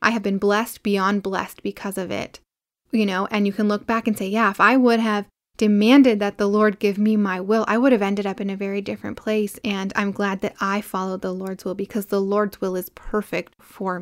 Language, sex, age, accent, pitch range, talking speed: English, female, 10-29, American, 200-240 Hz, 245 wpm